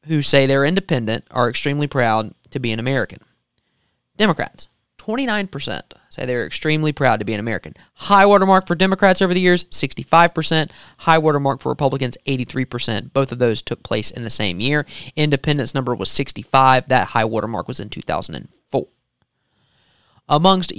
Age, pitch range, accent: 20-39, 115-145 Hz, American